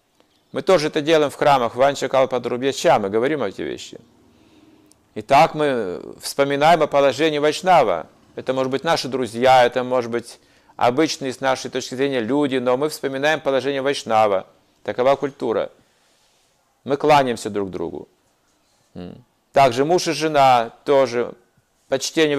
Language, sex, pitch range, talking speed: Russian, male, 125-150 Hz, 135 wpm